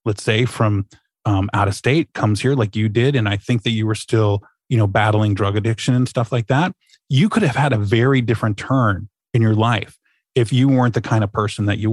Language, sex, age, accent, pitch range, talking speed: English, male, 20-39, American, 105-130 Hz, 240 wpm